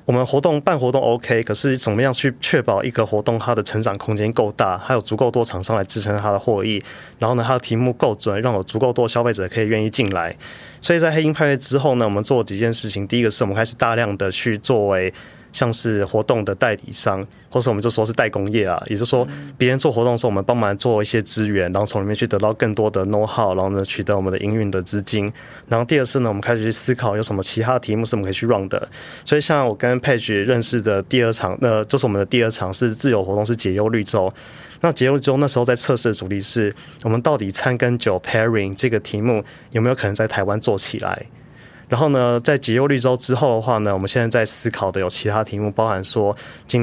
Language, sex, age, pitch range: Chinese, male, 20-39, 105-125 Hz